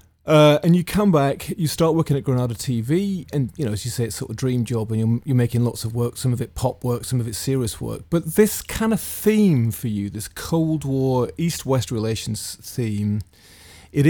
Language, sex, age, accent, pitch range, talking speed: English, male, 30-49, British, 105-140 Hz, 235 wpm